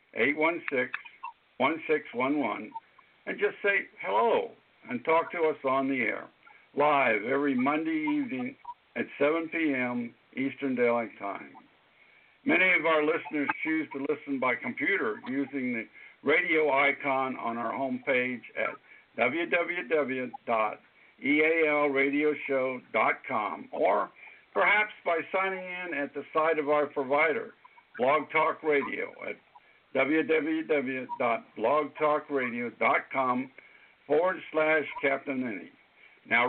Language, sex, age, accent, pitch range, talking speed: English, male, 60-79, American, 135-170 Hz, 100 wpm